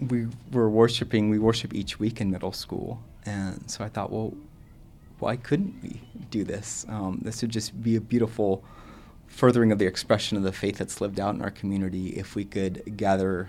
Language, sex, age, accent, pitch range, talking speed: English, male, 30-49, American, 95-110 Hz, 195 wpm